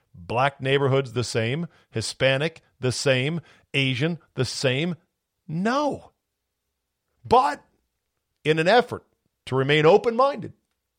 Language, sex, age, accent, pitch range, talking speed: English, male, 50-69, American, 105-145 Hz, 100 wpm